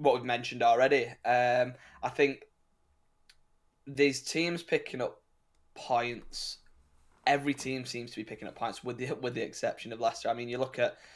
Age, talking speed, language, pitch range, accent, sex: 10-29, 170 wpm, English, 115-130 Hz, British, male